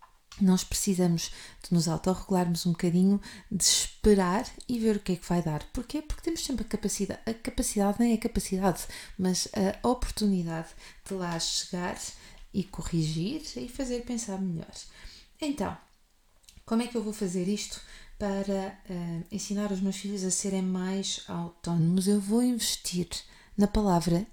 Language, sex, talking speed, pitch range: Portuguese, female, 155 wpm, 180-215 Hz